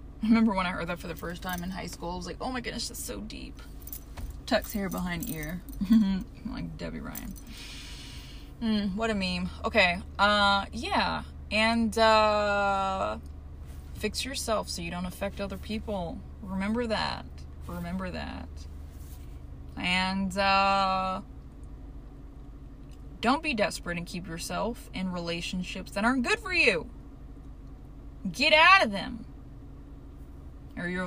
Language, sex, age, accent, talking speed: English, female, 20-39, American, 135 wpm